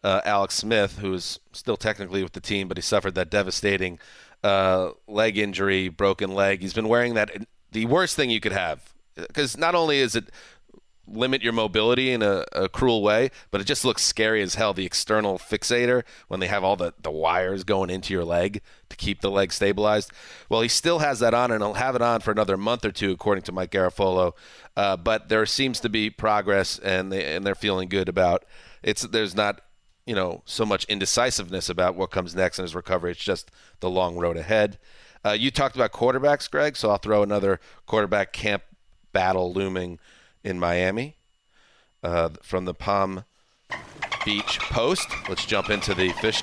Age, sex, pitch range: 30-49, male, 95-115 Hz